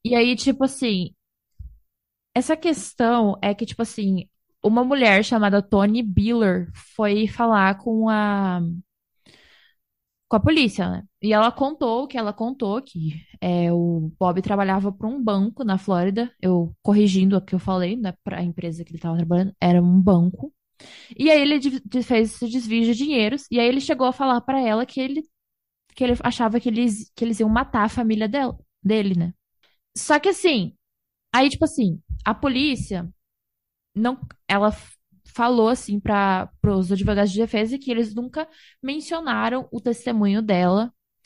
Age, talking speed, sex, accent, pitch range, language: 20-39, 165 wpm, female, Brazilian, 195-265 Hz, Portuguese